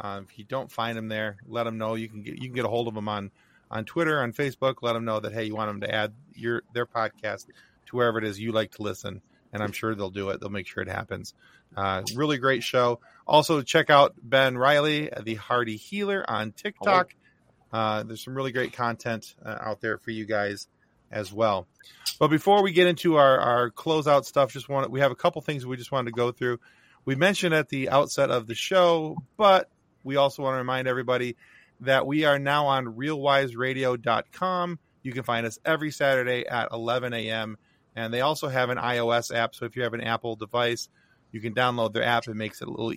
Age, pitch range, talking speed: 30-49, 115-145 Hz, 225 wpm